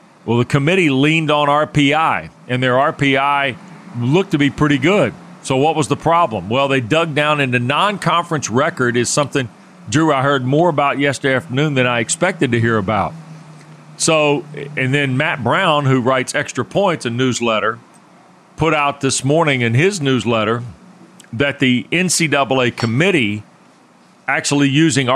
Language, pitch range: English, 130-160 Hz